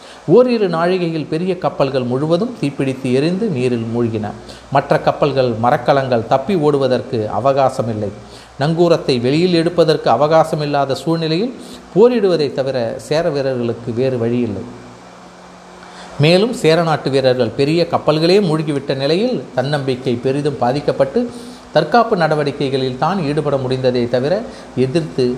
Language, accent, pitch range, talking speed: Tamil, native, 125-165 Hz, 105 wpm